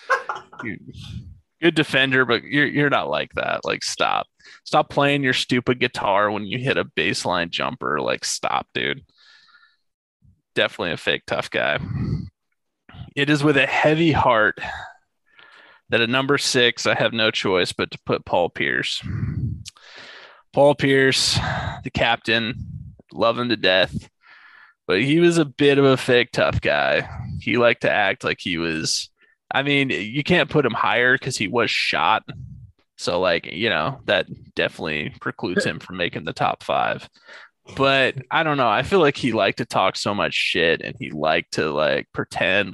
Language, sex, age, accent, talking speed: English, male, 20-39, American, 165 wpm